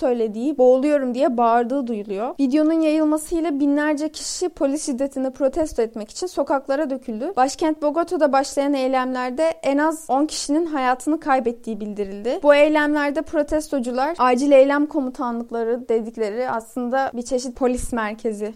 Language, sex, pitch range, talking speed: Turkish, female, 245-295 Hz, 125 wpm